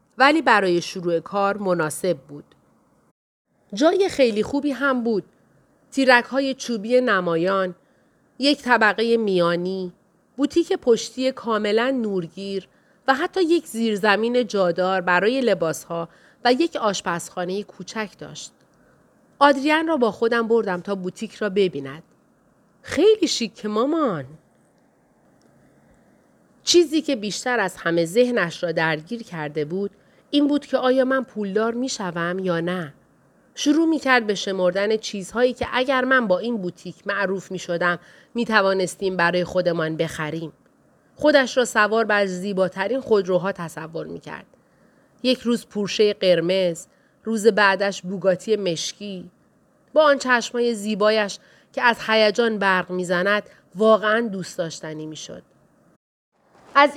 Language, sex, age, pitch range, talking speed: Persian, female, 40-59, 180-250 Hz, 120 wpm